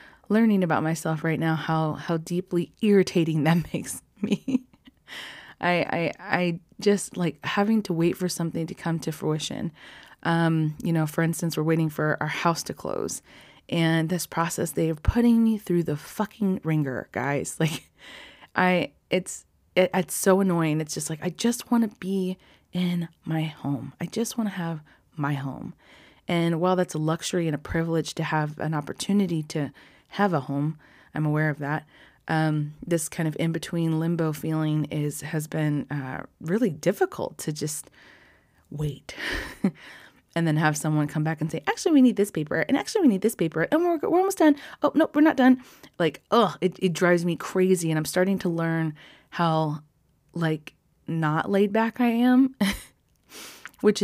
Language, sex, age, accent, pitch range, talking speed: English, female, 20-39, American, 155-195 Hz, 180 wpm